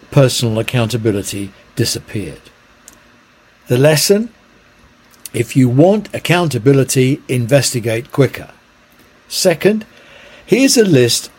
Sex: male